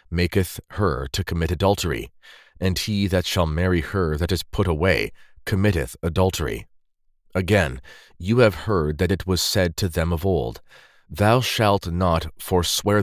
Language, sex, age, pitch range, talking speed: English, male, 30-49, 85-100 Hz, 150 wpm